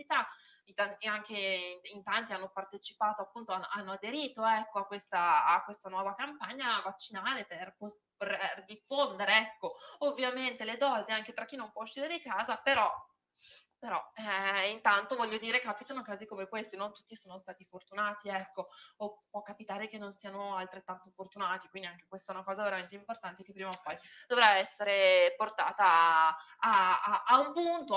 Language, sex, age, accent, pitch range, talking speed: Italian, female, 20-39, native, 195-250 Hz, 160 wpm